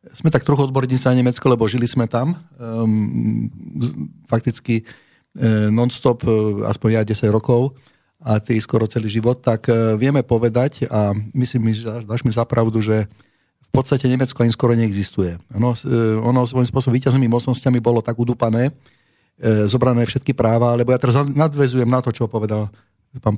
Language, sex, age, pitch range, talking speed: Slovak, male, 50-69, 110-130 Hz, 170 wpm